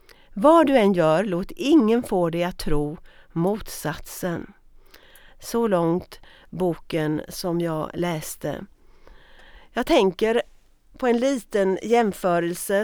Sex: female